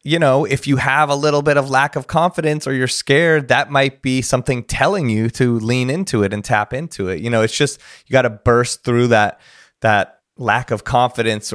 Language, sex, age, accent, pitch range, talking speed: English, male, 30-49, American, 105-130 Hz, 225 wpm